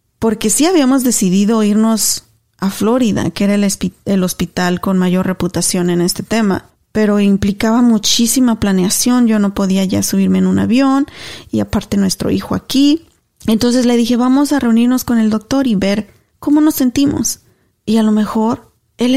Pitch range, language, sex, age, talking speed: 180-225 Hz, Spanish, female, 30-49, 170 wpm